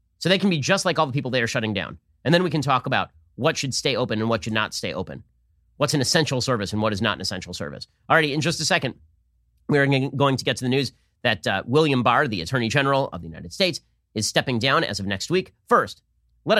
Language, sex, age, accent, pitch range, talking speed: English, male, 30-49, American, 110-155 Hz, 260 wpm